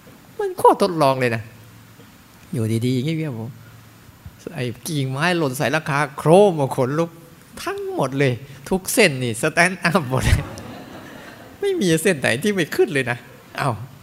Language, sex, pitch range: Thai, male, 120-165 Hz